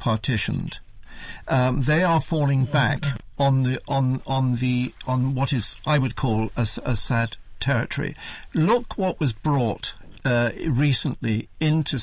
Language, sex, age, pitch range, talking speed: English, male, 60-79, 120-155 Hz, 140 wpm